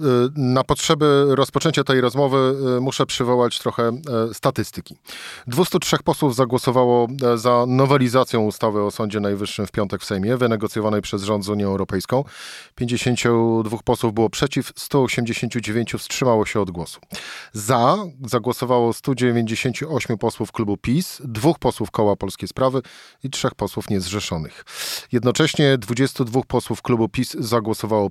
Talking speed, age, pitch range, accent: 125 wpm, 40-59, 105-130 Hz, native